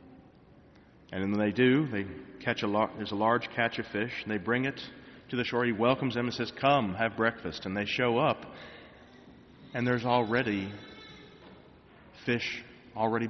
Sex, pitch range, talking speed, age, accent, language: male, 105-120 Hz, 170 wpm, 40-59, American, English